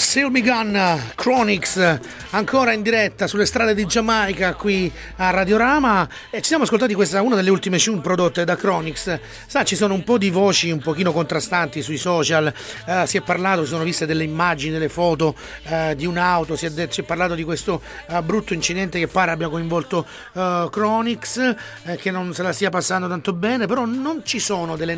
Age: 30-49